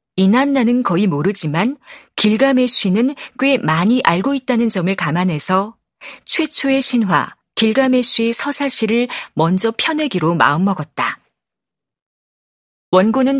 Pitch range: 185-255 Hz